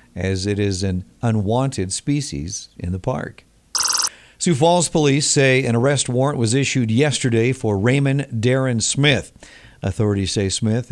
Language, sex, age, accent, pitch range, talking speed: English, male, 50-69, American, 105-135 Hz, 145 wpm